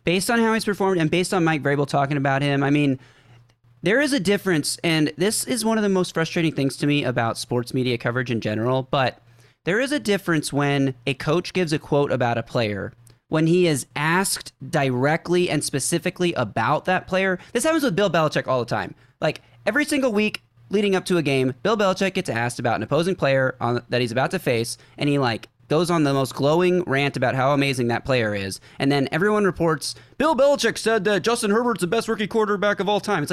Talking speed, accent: 220 wpm, American